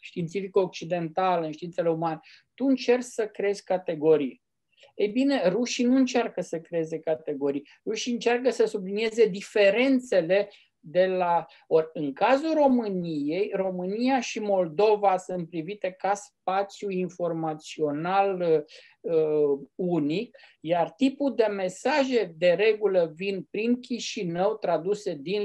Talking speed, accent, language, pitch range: 115 wpm, native, Romanian, 180-230 Hz